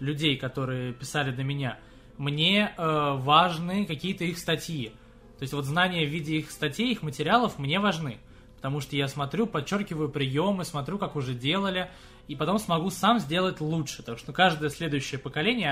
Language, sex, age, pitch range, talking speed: Russian, male, 20-39, 135-185 Hz, 170 wpm